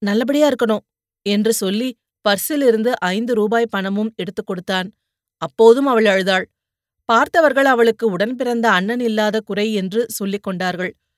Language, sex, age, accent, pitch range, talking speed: Tamil, female, 30-49, native, 200-235 Hz, 125 wpm